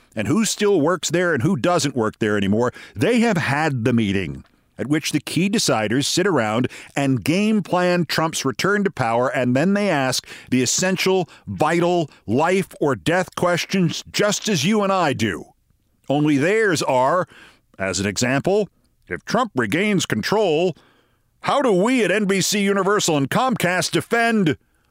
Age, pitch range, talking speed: 50-69, 110-170 Hz, 155 wpm